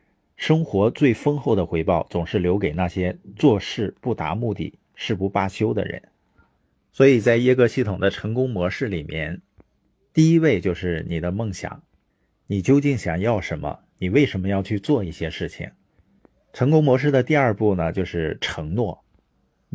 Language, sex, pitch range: Chinese, male, 90-130 Hz